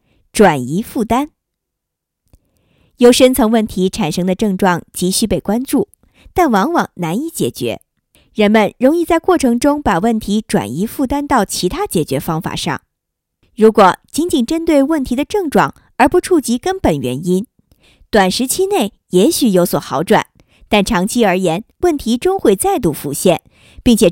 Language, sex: Chinese, male